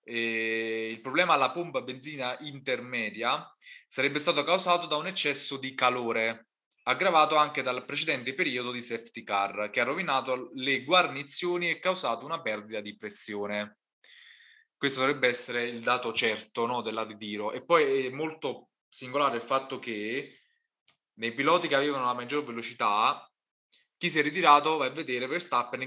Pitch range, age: 115-145 Hz, 20-39